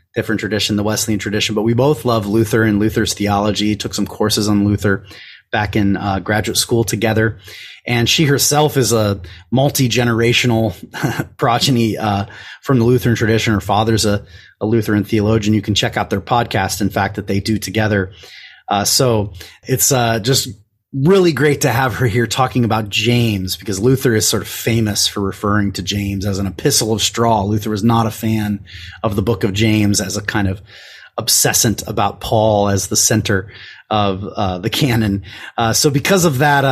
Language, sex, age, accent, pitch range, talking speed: English, male, 30-49, American, 100-120 Hz, 185 wpm